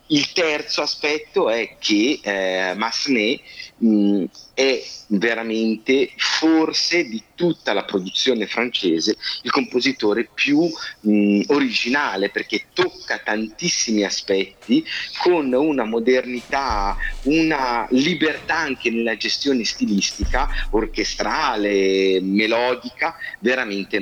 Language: Italian